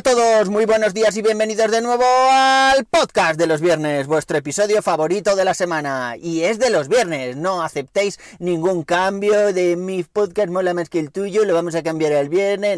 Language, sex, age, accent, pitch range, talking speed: Spanish, male, 30-49, Spanish, 140-190 Hz, 200 wpm